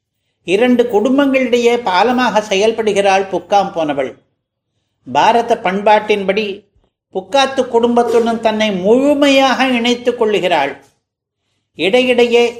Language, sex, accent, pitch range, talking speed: Tamil, male, native, 195-245 Hz, 70 wpm